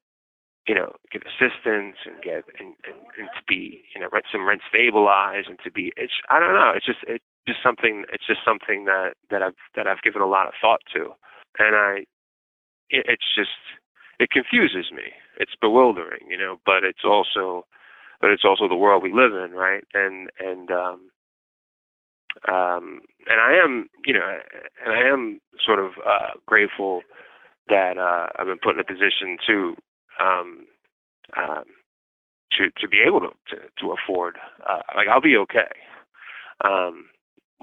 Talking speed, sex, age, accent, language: 170 wpm, male, 20-39, American, English